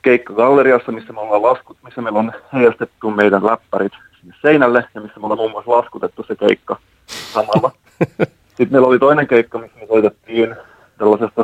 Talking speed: 170 wpm